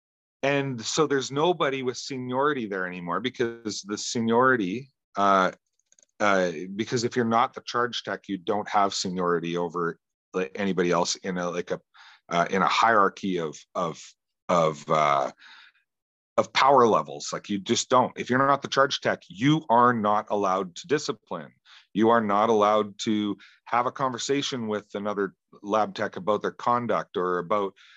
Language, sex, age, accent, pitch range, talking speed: English, male, 40-59, American, 100-130 Hz, 160 wpm